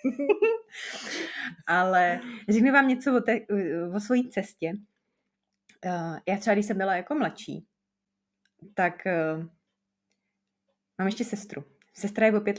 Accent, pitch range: native, 190-245 Hz